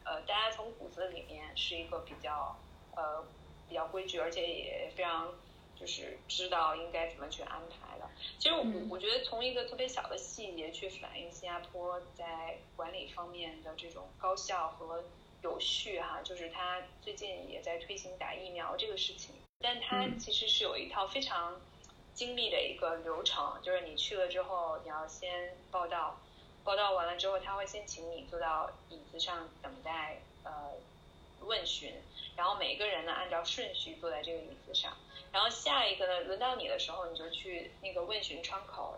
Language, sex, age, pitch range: Chinese, female, 10-29, 170-205 Hz